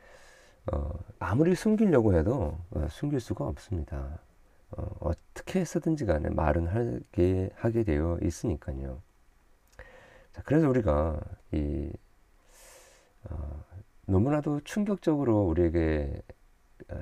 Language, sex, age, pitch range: Korean, male, 40-59, 80-115 Hz